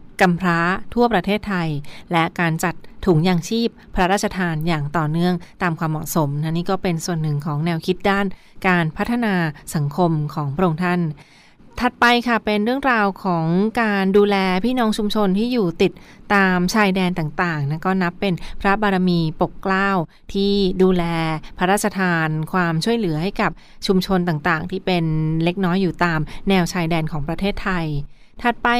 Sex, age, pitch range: female, 20-39, 170-200 Hz